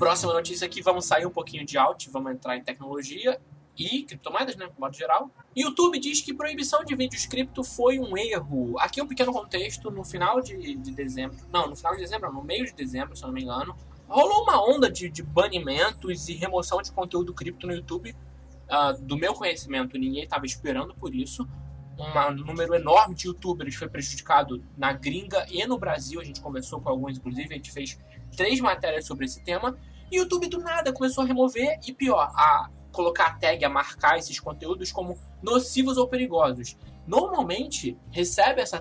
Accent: Brazilian